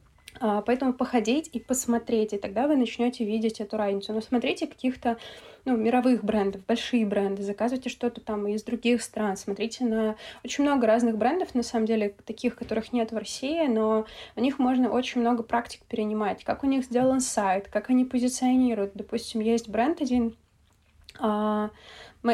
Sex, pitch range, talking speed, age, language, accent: female, 215-245 Hz, 165 wpm, 20-39, Russian, native